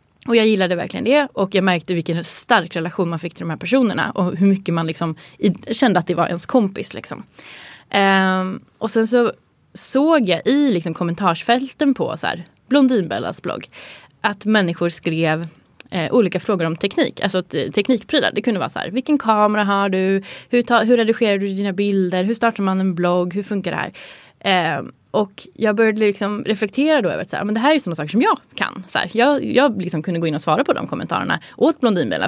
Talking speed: 215 wpm